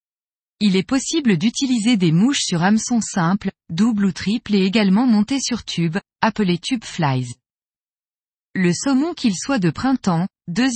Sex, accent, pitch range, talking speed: female, French, 185-245 Hz, 150 wpm